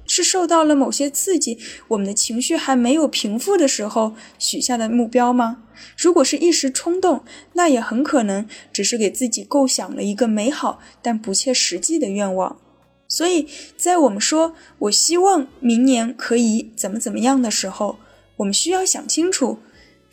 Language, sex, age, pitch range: Chinese, female, 10-29, 235-315 Hz